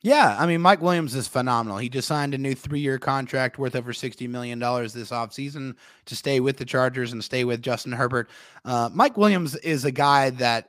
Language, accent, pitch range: English, American, 125-165 Hz